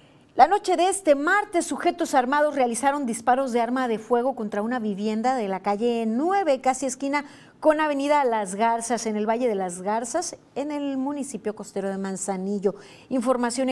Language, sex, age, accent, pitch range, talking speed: Spanish, female, 40-59, Mexican, 215-270 Hz, 170 wpm